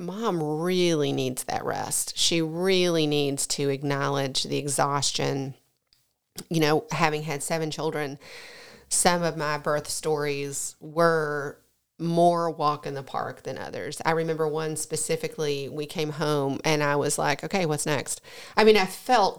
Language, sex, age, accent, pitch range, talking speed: English, female, 40-59, American, 150-170 Hz, 150 wpm